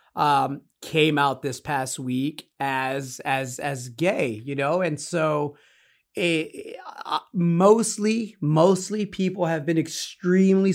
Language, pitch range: English, 145-190 Hz